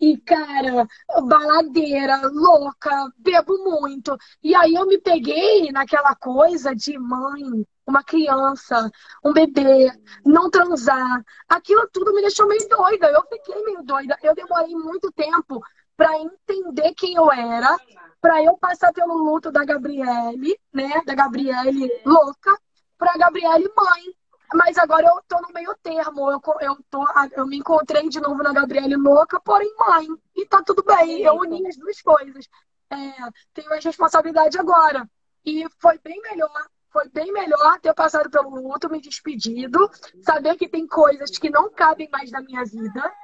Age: 10-29